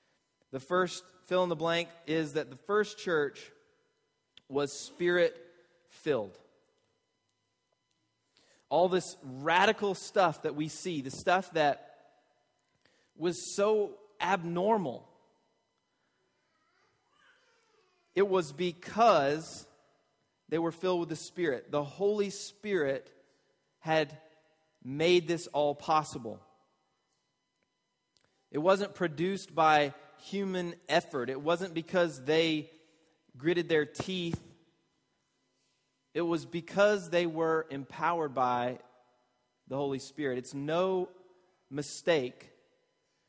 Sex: male